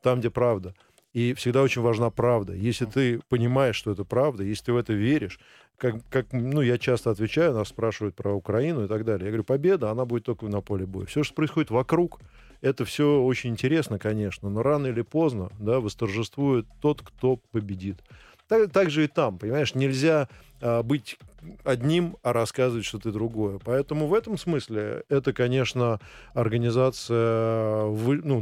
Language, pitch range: Russian, 110-130 Hz